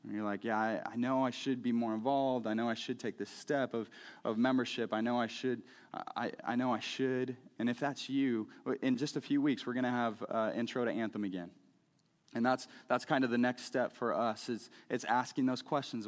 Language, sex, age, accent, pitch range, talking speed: English, male, 20-39, American, 110-130 Hz, 235 wpm